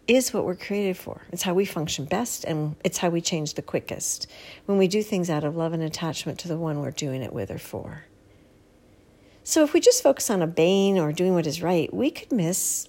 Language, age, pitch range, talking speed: English, 50-69, 165-230 Hz, 235 wpm